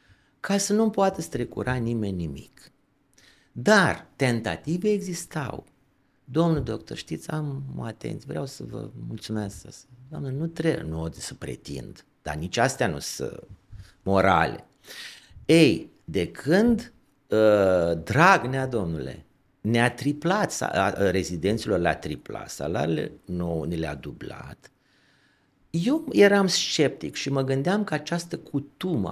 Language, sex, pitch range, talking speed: Romanian, male, 95-155 Hz, 115 wpm